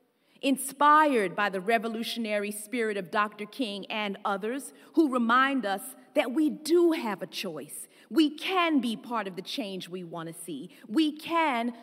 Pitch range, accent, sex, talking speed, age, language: 210-275 Hz, American, female, 155 wpm, 40-59, English